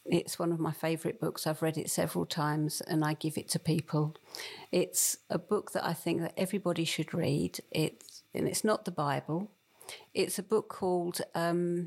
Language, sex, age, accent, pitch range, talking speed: English, female, 50-69, British, 160-185 Hz, 190 wpm